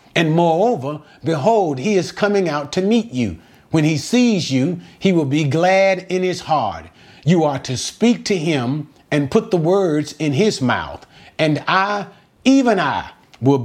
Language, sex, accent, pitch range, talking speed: English, male, American, 140-195 Hz, 170 wpm